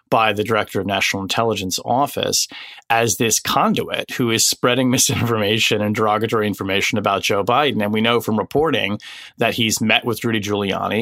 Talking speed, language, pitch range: 170 wpm, English, 105-125 Hz